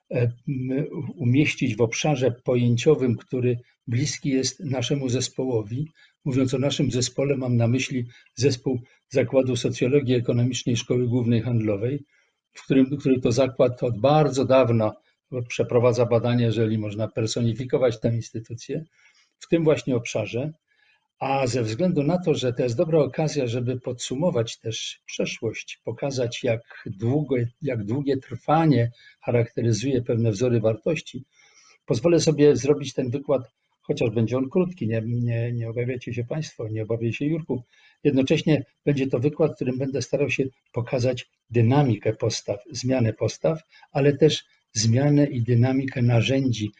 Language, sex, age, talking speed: Polish, male, 50-69, 135 wpm